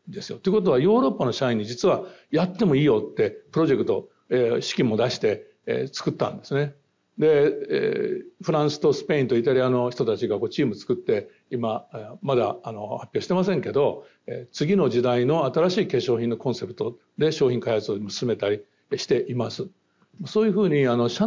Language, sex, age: Japanese, male, 60-79